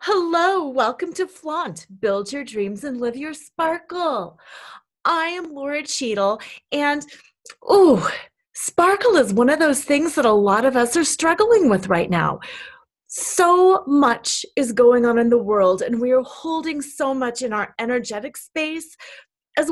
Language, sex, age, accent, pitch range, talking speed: English, female, 30-49, American, 230-320 Hz, 160 wpm